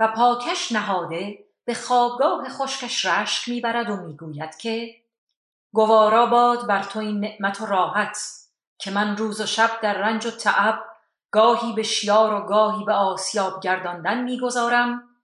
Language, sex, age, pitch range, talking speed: Persian, female, 40-59, 180-240 Hz, 145 wpm